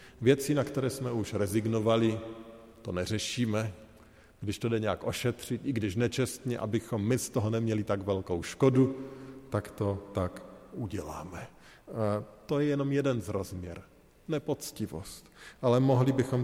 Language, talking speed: Slovak, 140 wpm